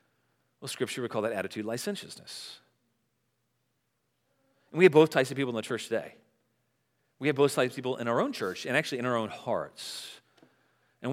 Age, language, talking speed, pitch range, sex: 40-59, English, 190 wpm, 120-180 Hz, male